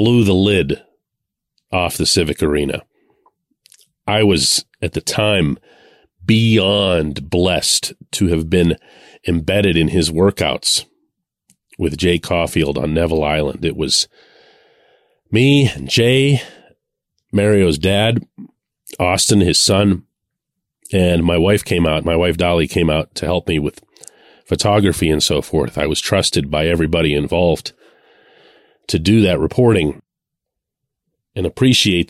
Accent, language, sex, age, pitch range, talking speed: American, English, male, 40-59, 85-105 Hz, 125 wpm